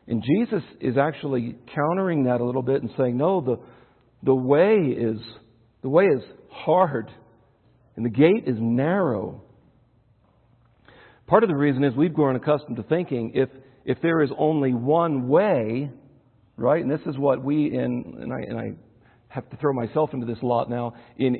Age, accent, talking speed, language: 50-69, American, 175 wpm, English